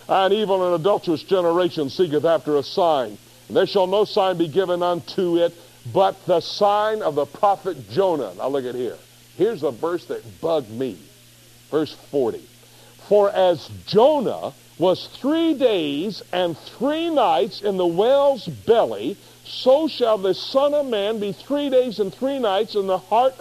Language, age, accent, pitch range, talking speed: English, 60-79, American, 185-270 Hz, 165 wpm